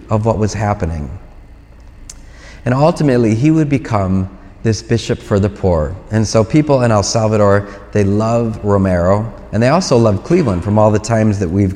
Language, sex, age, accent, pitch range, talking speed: English, male, 30-49, American, 100-130 Hz, 175 wpm